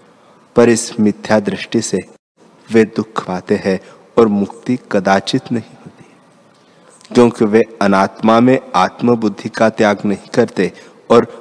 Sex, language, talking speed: male, Hindi, 125 wpm